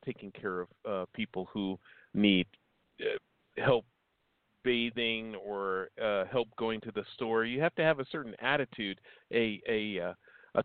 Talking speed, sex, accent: 150 wpm, male, American